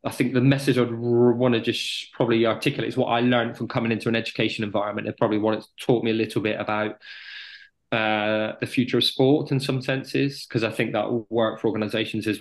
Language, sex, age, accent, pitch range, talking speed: English, male, 20-39, British, 110-130 Hz, 230 wpm